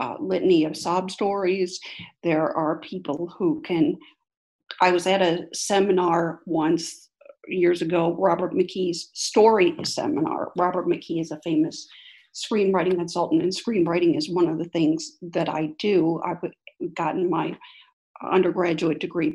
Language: English